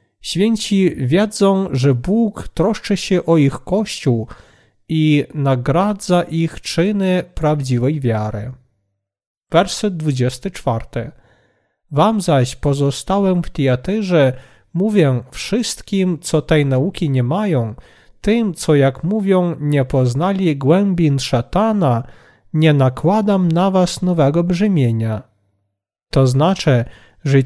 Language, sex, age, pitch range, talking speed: Polish, male, 40-59, 130-190 Hz, 100 wpm